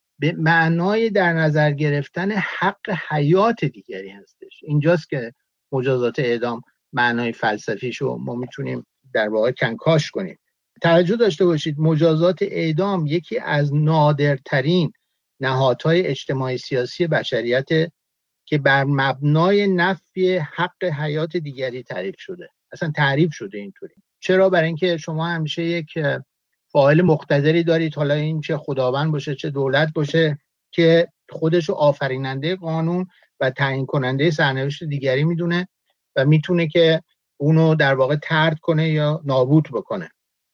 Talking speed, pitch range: 125 wpm, 140-175 Hz